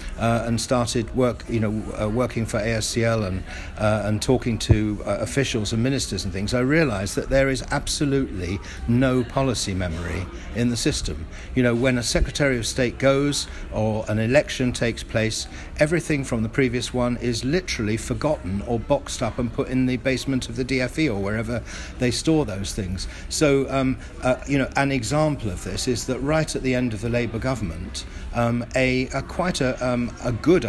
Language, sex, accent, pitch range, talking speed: English, male, British, 100-130 Hz, 190 wpm